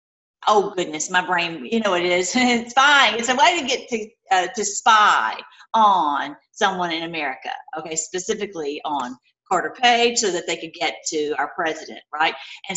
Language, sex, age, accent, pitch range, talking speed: English, female, 50-69, American, 180-255 Hz, 185 wpm